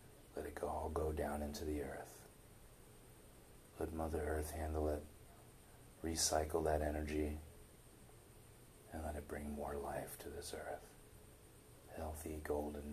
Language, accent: English, American